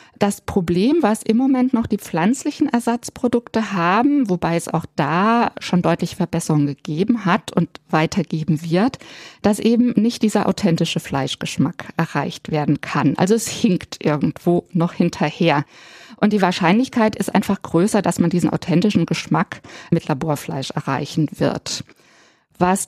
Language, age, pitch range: German, 50-69, 160-215 Hz